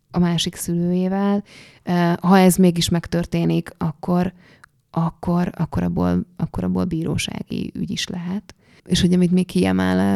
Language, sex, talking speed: Hungarian, female, 125 wpm